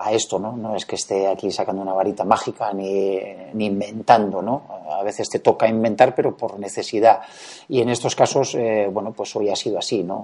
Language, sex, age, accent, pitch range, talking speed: Spanish, male, 40-59, Spanish, 95-115 Hz, 210 wpm